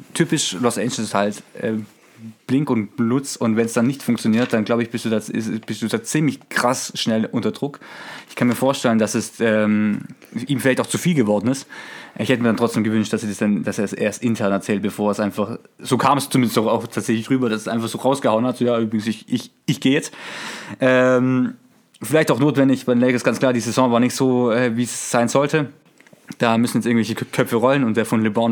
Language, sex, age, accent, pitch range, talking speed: German, male, 20-39, German, 110-130 Hz, 240 wpm